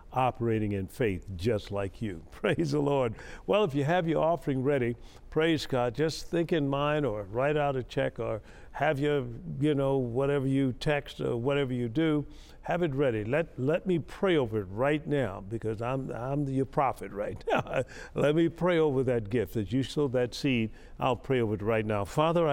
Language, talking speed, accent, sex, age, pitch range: English, 200 wpm, American, male, 50-69, 110-145 Hz